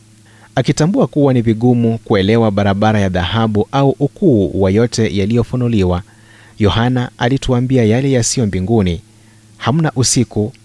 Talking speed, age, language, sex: 105 wpm, 30-49, Swahili, male